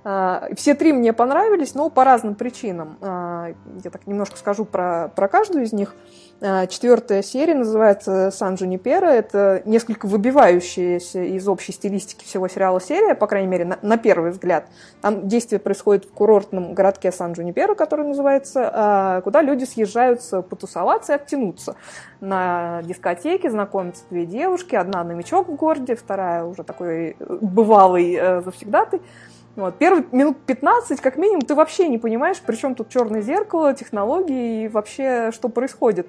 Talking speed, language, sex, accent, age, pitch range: 150 wpm, Russian, female, native, 20-39, 190-260 Hz